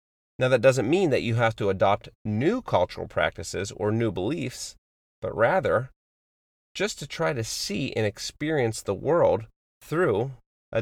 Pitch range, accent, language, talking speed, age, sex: 95-130 Hz, American, English, 155 wpm, 30-49, male